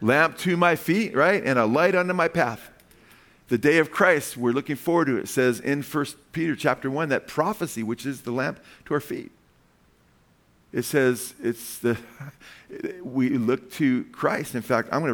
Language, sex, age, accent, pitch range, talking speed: English, male, 40-59, American, 130-165 Hz, 190 wpm